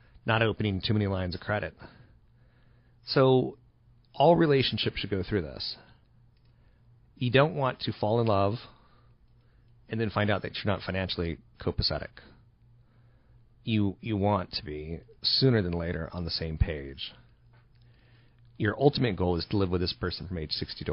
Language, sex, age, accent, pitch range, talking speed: English, male, 30-49, American, 90-120 Hz, 160 wpm